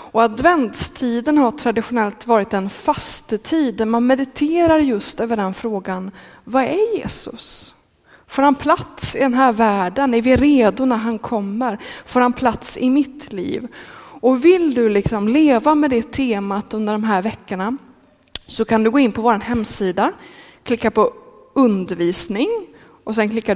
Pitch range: 200-270 Hz